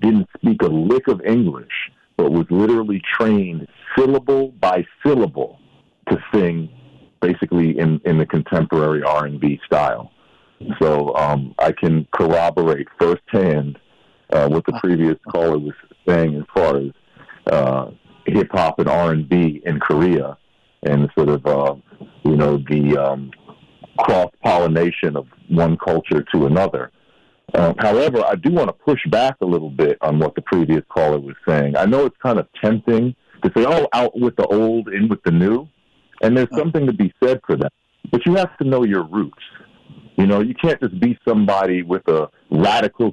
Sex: male